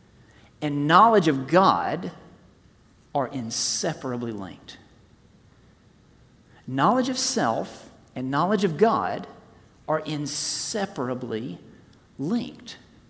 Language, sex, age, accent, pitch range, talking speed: English, male, 40-59, American, 125-185 Hz, 80 wpm